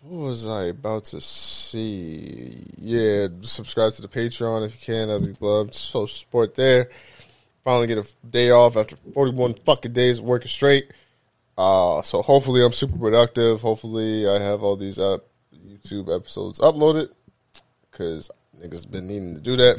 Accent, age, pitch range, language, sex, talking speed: American, 20-39, 100-125 Hz, English, male, 165 wpm